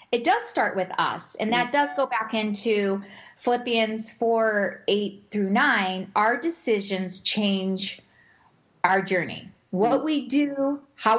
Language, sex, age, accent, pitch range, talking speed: English, female, 40-59, American, 195-280 Hz, 135 wpm